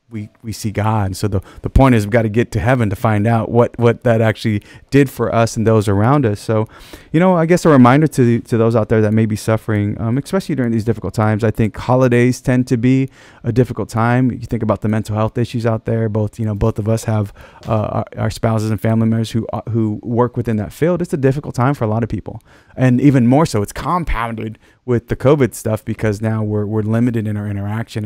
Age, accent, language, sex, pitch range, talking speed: 30-49, American, English, male, 105-125 Hz, 250 wpm